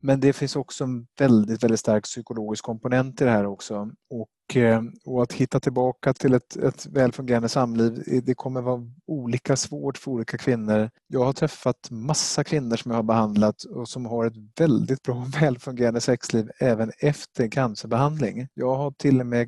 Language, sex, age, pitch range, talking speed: Swedish, male, 30-49, 115-140 Hz, 175 wpm